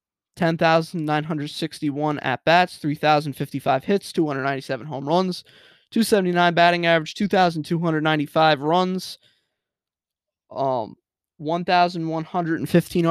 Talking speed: 65 wpm